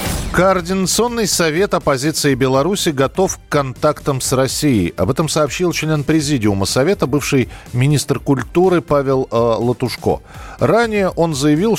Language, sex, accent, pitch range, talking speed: Russian, male, native, 110-160 Hz, 115 wpm